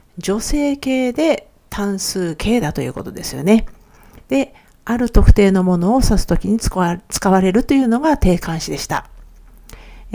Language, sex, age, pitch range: Japanese, female, 50-69, 170-235 Hz